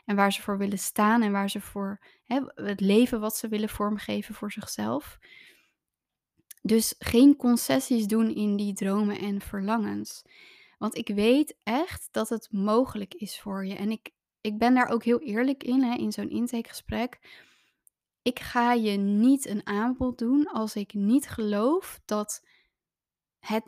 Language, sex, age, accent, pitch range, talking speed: Dutch, female, 20-39, Dutch, 205-245 Hz, 155 wpm